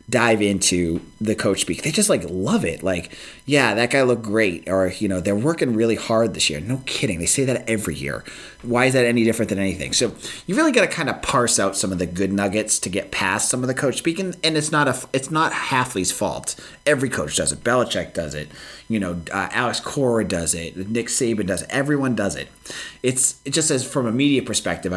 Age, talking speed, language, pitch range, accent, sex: 30-49, 240 wpm, English, 95-130 Hz, American, male